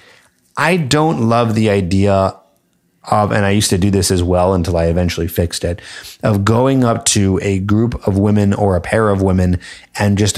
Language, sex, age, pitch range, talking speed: English, male, 30-49, 90-125 Hz, 195 wpm